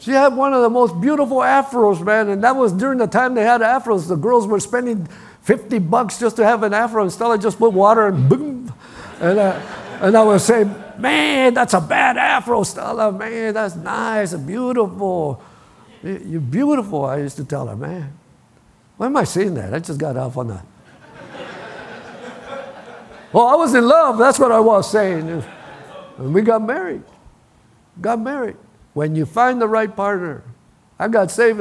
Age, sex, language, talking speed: 50-69, male, English, 180 wpm